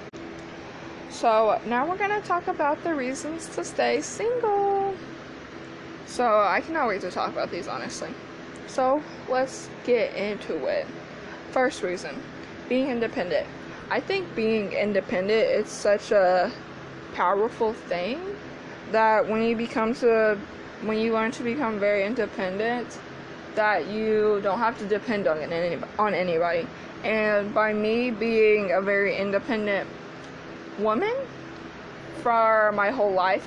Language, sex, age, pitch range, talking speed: English, female, 20-39, 205-235 Hz, 130 wpm